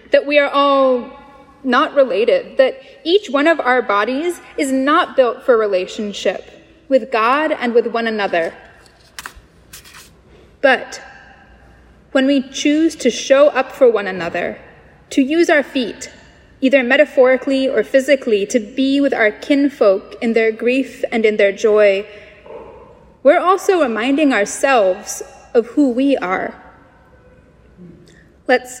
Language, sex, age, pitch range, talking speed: English, female, 20-39, 230-305 Hz, 130 wpm